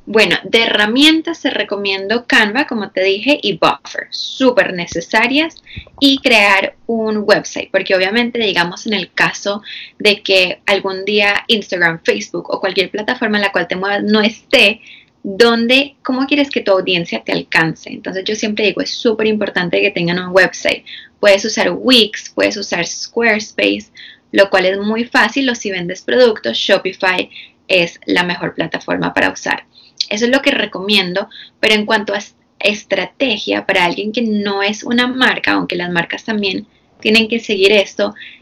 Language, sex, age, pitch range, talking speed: Spanish, female, 10-29, 195-235 Hz, 165 wpm